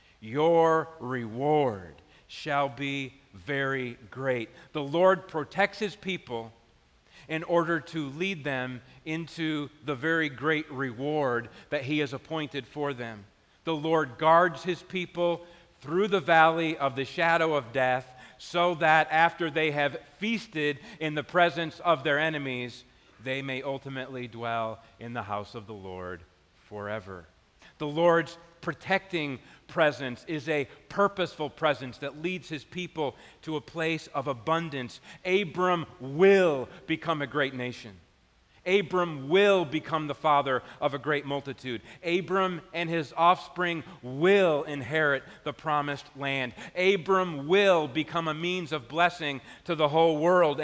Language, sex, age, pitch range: English, male, 40-59, 130-170 Hz